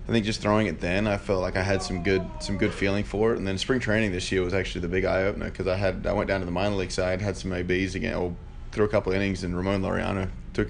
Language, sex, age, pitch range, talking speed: English, male, 20-39, 90-100 Hz, 295 wpm